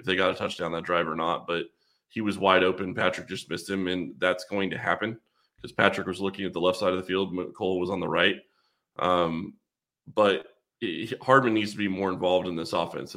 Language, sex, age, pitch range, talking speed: English, male, 20-39, 90-110 Hz, 235 wpm